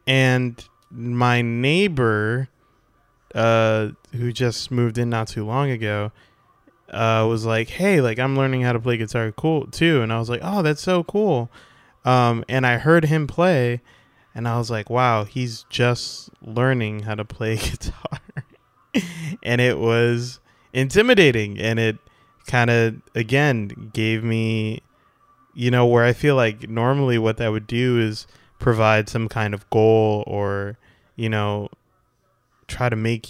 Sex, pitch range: male, 110-130 Hz